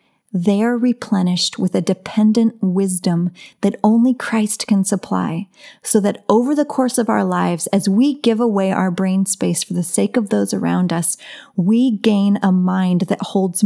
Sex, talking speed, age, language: female, 175 wpm, 30-49, English